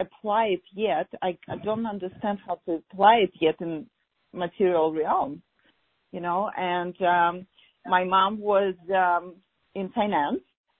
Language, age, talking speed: English, 40-59, 140 wpm